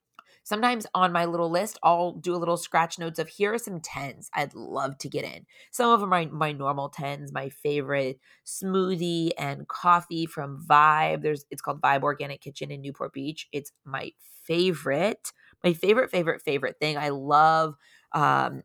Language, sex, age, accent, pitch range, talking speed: English, female, 20-39, American, 145-180 Hz, 180 wpm